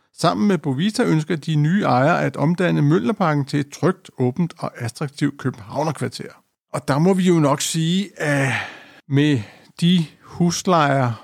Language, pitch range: Danish, 135-170 Hz